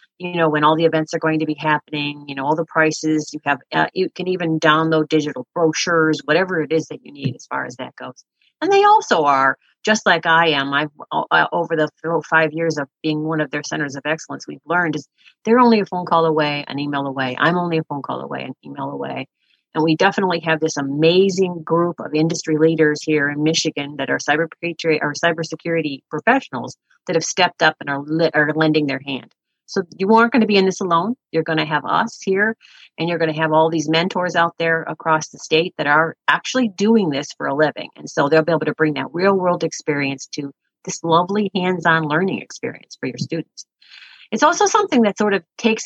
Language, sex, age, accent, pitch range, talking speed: English, female, 40-59, American, 155-180 Hz, 230 wpm